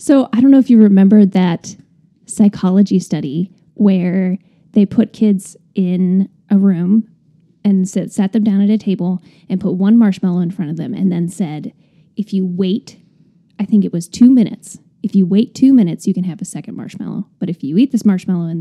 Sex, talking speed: female, 200 wpm